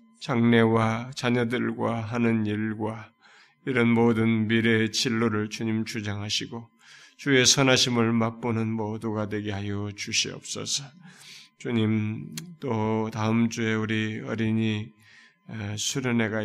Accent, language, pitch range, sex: native, Korean, 105-120 Hz, male